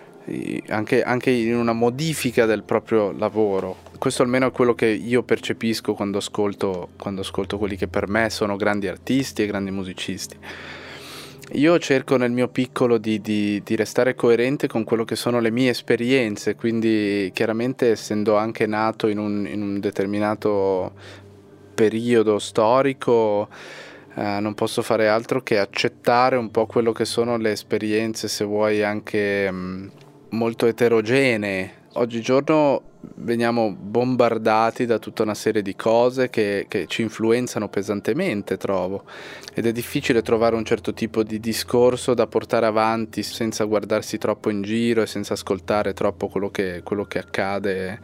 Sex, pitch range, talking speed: male, 105-120 Hz, 140 wpm